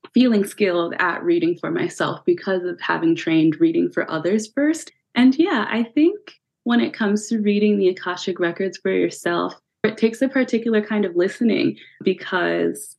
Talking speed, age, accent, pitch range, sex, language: 165 wpm, 20-39, American, 185-280 Hz, female, English